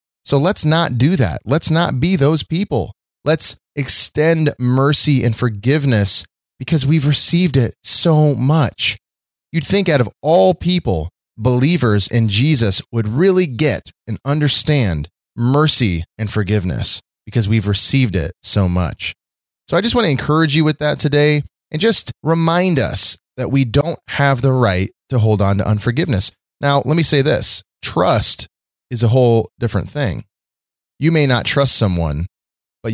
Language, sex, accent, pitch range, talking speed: English, male, American, 100-145 Hz, 155 wpm